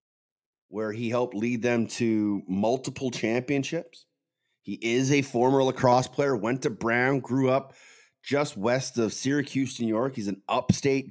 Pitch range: 115-140 Hz